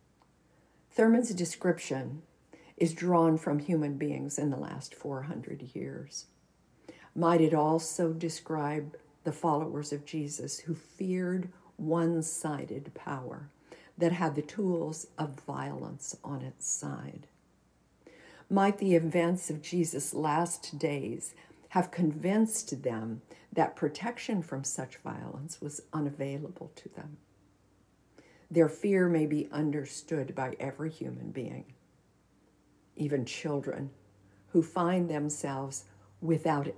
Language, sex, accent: English, female, American